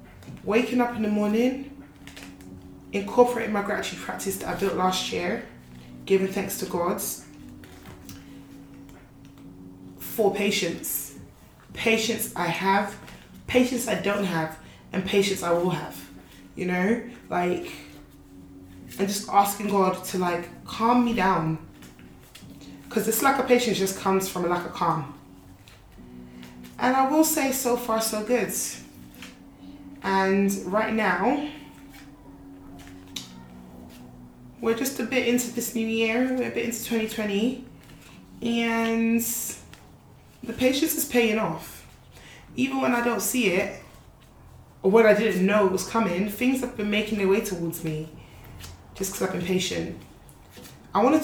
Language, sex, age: English, female, 20-39